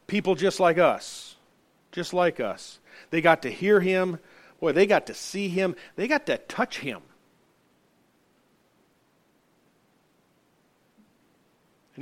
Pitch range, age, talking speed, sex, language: 160-225 Hz, 40-59, 120 wpm, male, English